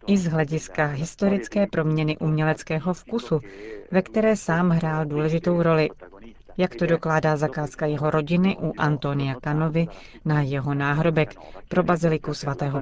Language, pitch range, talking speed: Czech, 150-180 Hz, 130 wpm